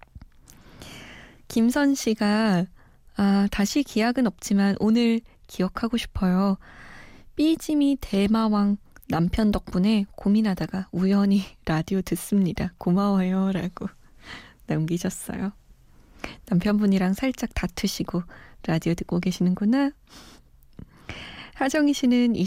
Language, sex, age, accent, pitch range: Korean, female, 20-39, native, 180-245 Hz